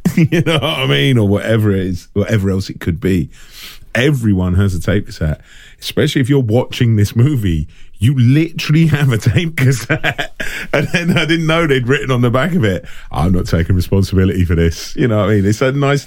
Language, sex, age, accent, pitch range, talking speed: English, male, 40-59, British, 80-130 Hz, 215 wpm